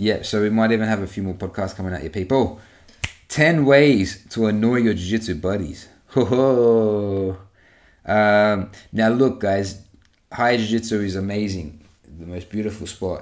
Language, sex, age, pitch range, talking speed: English, male, 30-49, 95-110 Hz, 165 wpm